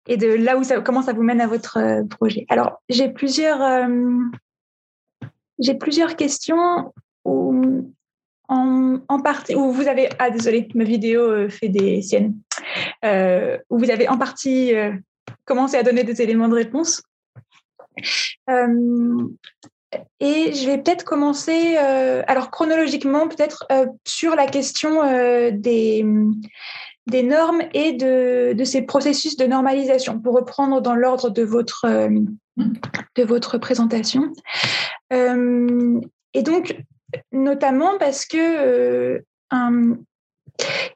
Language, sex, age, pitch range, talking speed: French, female, 20-39, 240-300 Hz, 130 wpm